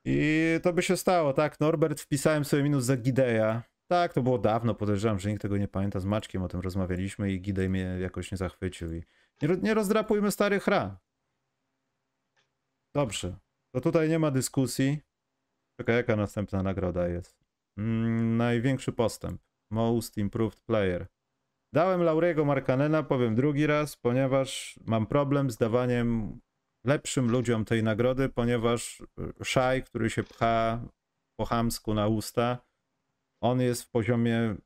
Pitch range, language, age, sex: 100-135 Hz, Polish, 30-49, male